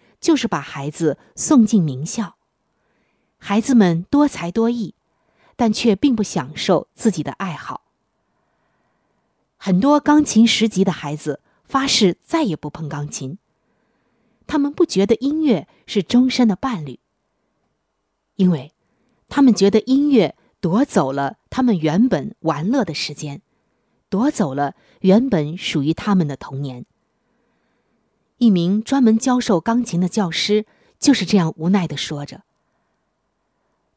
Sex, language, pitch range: female, Chinese, 165-240 Hz